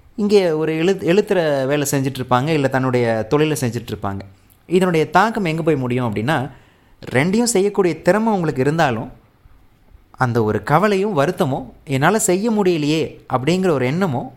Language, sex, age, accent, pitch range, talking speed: Tamil, male, 30-49, native, 120-170 Hz, 135 wpm